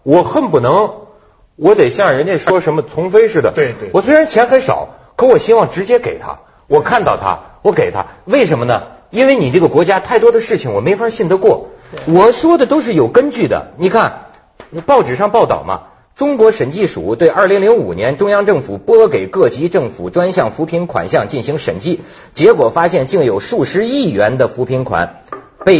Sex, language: male, Chinese